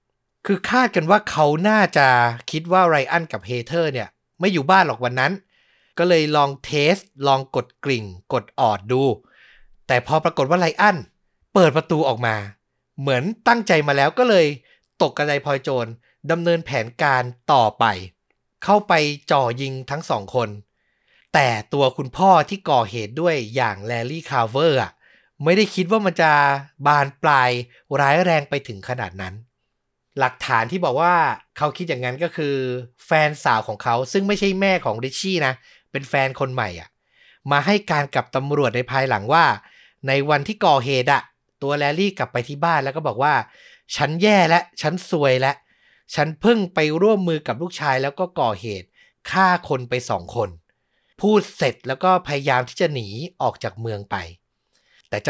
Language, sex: Thai, male